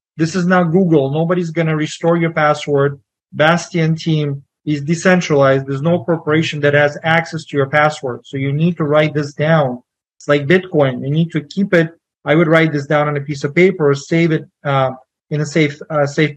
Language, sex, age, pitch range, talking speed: English, male, 30-49, 145-170 Hz, 210 wpm